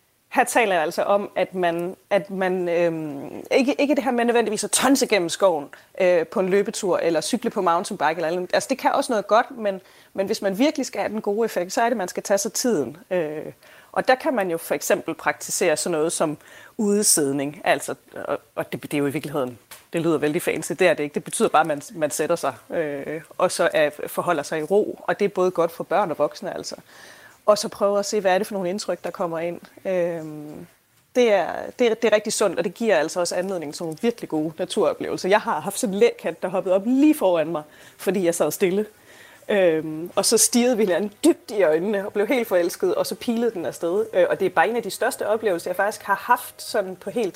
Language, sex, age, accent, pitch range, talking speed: Danish, female, 30-49, native, 170-220 Hz, 245 wpm